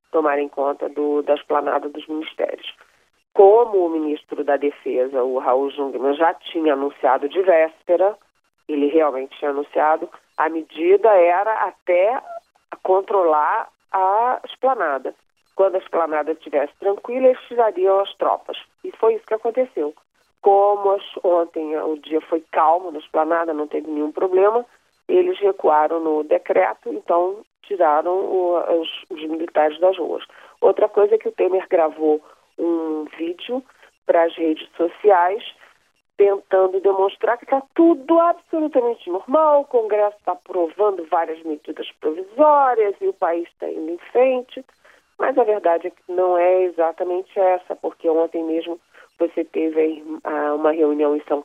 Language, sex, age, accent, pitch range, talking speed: Portuguese, female, 40-59, Brazilian, 155-220 Hz, 140 wpm